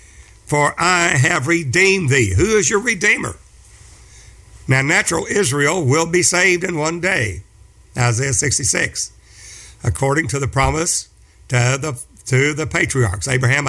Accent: American